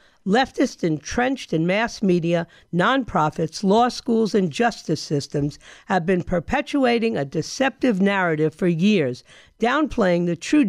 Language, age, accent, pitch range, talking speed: English, 50-69, American, 170-235 Hz, 125 wpm